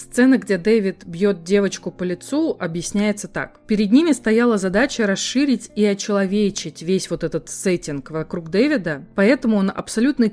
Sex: female